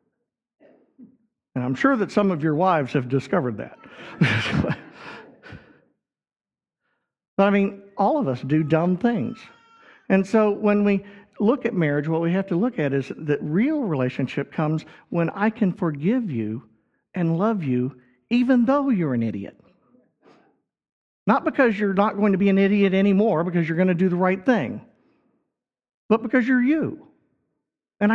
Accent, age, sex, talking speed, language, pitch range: American, 50-69, male, 160 wpm, English, 145-220 Hz